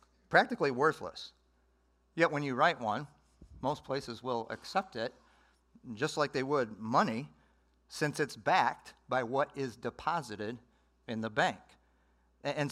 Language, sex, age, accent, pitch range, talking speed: English, male, 50-69, American, 150-200 Hz, 130 wpm